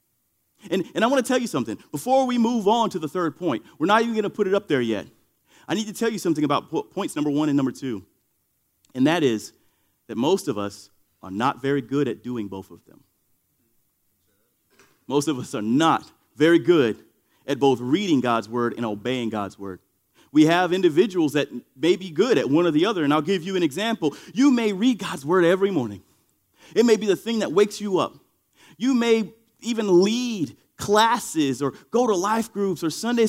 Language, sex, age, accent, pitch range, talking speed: English, male, 30-49, American, 175-255 Hz, 210 wpm